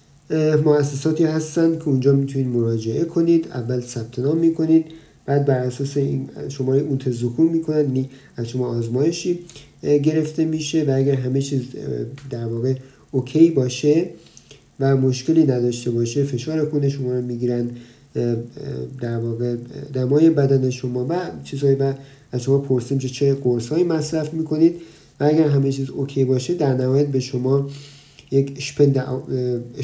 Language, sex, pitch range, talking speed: Persian, male, 125-155 Hz, 140 wpm